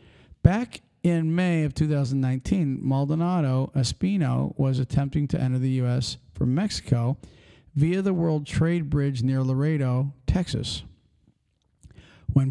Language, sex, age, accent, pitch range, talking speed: English, male, 50-69, American, 125-155 Hz, 115 wpm